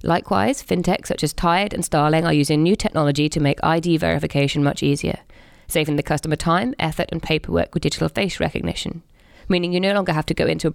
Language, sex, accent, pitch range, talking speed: English, female, British, 145-180 Hz, 205 wpm